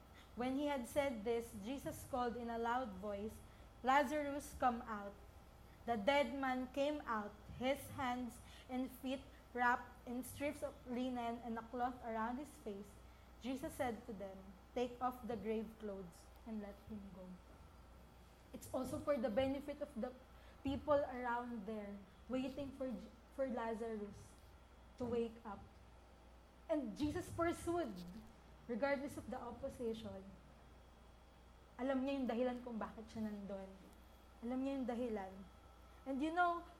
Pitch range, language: 215-275 Hz, English